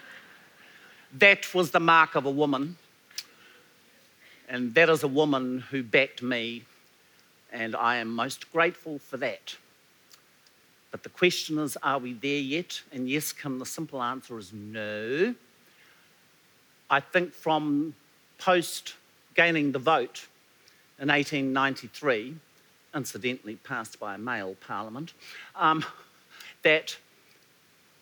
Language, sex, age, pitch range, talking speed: English, male, 50-69, 125-165 Hz, 115 wpm